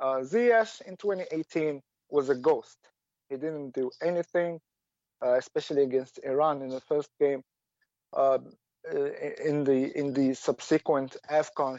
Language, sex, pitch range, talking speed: English, male, 140-220 Hz, 130 wpm